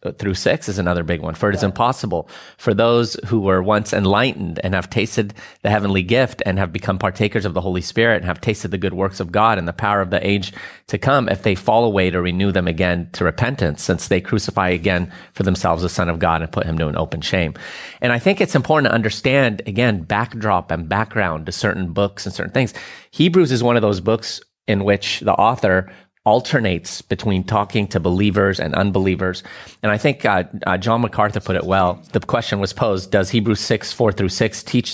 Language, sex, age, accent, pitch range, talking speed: English, male, 30-49, American, 90-110 Hz, 220 wpm